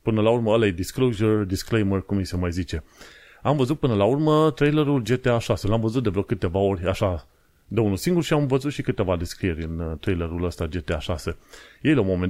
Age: 30-49